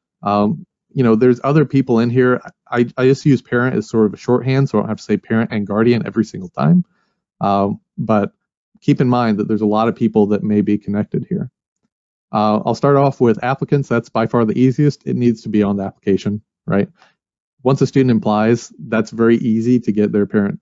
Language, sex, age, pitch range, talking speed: English, male, 30-49, 110-140 Hz, 220 wpm